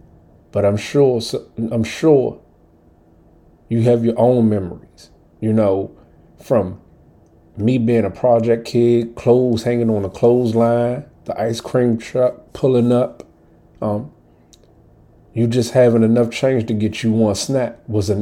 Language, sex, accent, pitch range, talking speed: English, male, American, 85-115 Hz, 135 wpm